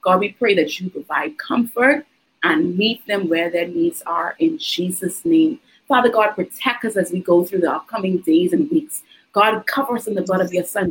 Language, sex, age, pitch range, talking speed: English, female, 30-49, 185-275 Hz, 215 wpm